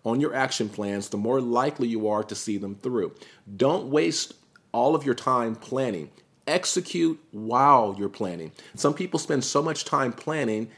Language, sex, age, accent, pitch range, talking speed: English, male, 40-59, American, 105-130 Hz, 175 wpm